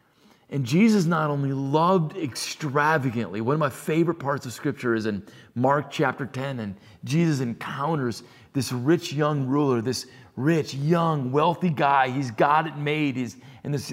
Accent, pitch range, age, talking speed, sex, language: American, 125-165 Hz, 40-59, 155 wpm, male, English